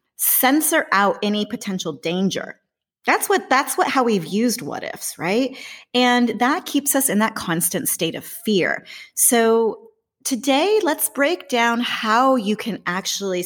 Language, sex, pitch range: English, female, 170-235 Hz